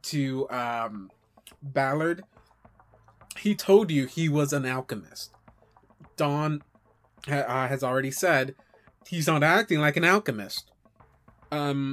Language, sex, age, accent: English, male, 20-39, American